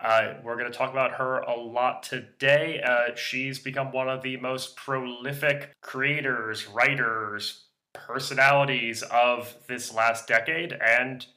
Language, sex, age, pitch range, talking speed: English, male, 20-39, 120-150 Hz, 135 wpm